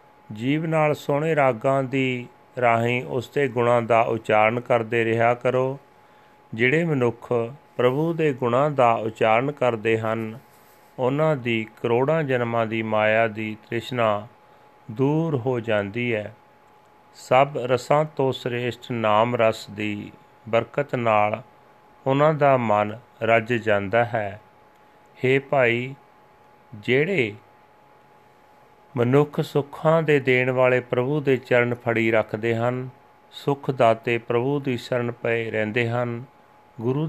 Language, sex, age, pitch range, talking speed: Punjabi, male, 40-59, 110-130 Hz, 115 wpm